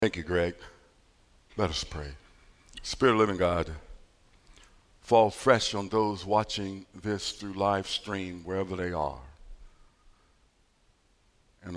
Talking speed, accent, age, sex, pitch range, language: 120 wpm, American, 60-79, male, 85-140 Hz, English